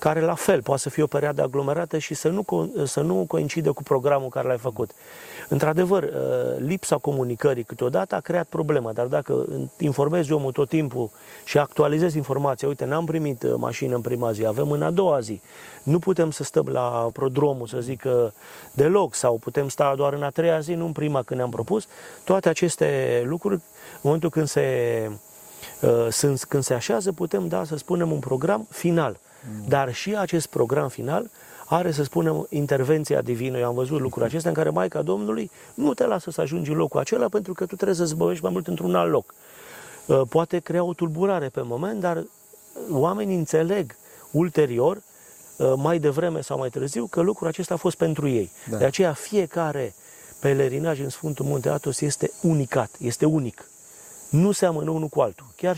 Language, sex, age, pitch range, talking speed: Romanian, male, 30-49, 130-170 Hz, 175 wpm